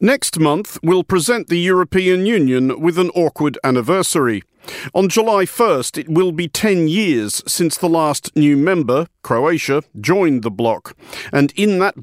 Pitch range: 140-185 Hz